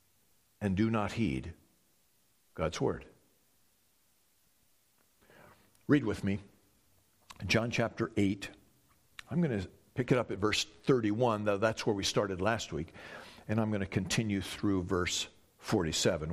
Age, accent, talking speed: 60-79, American, 130 wpm